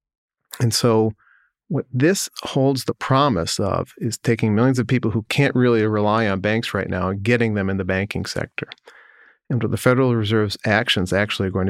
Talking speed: 190 wpm